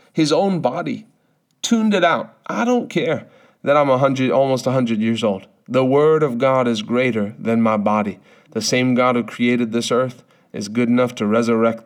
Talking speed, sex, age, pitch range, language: 185 wpm, male, 40-59, 115-130 Hz, English